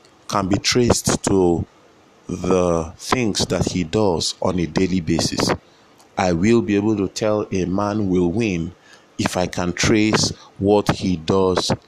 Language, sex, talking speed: English, male, 150 wpm